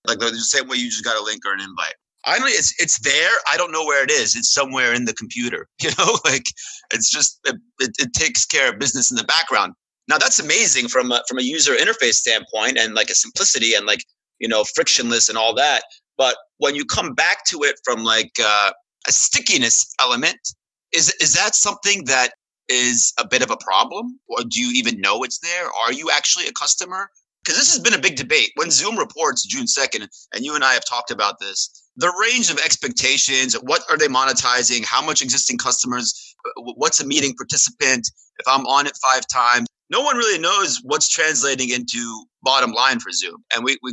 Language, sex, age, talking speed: English, male, 30-49, 215 wpm